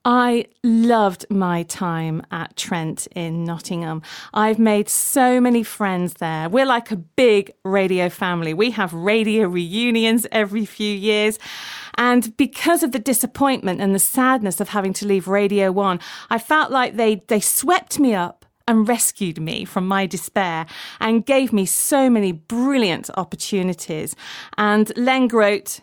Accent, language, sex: British, English, female